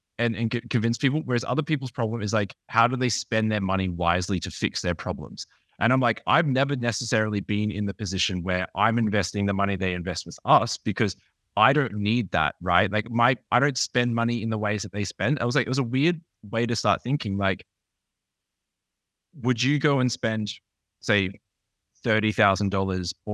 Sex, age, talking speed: male, 20-39, 200 wpm